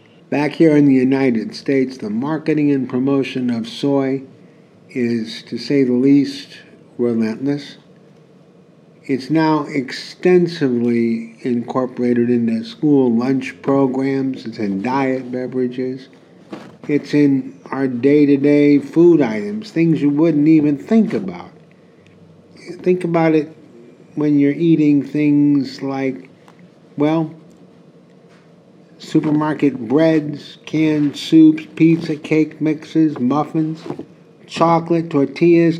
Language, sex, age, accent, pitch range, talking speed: English, male, 50-69, American, 135-165 Hz, 100 wpm